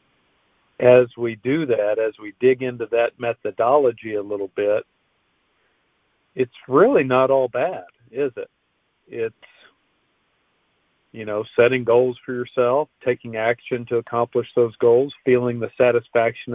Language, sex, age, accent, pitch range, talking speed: English, male, 50-69, American, 110-130 Hz, 130 wpm